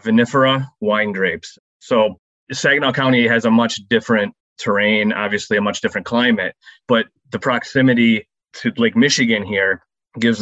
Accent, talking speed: American, 140 wpm